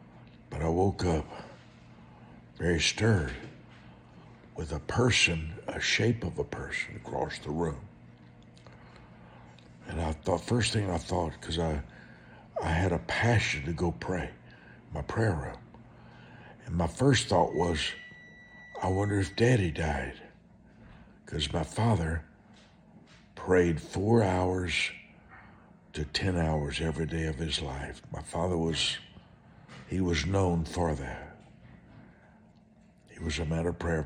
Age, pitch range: 60-79, 75-100 Hz